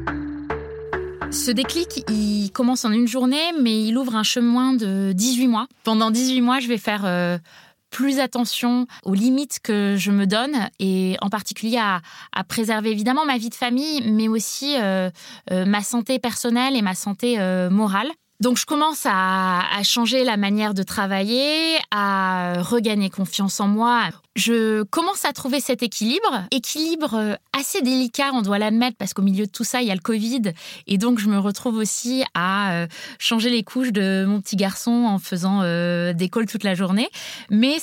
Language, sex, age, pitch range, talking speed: French, female, 20-39, 195-250 Hz, 180 wpm